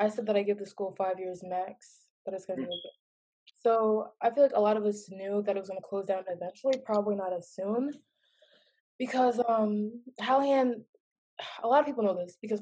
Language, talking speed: English, 220 wpm